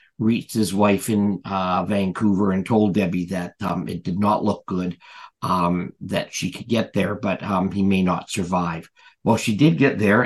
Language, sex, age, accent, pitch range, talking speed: English, male, 50-69, American, 95-110 Hz, 195 wpm